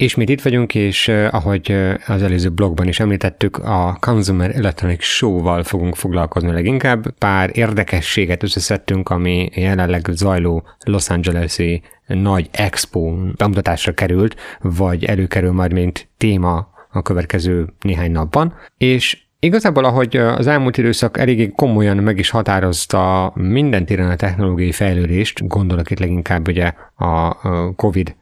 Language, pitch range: Hungarian, 90-110 Hz